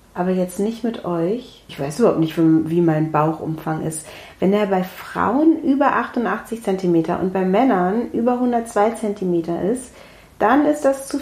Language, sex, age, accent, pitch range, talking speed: German, female, 30-49, German, 170-225 Hz, 165 wpm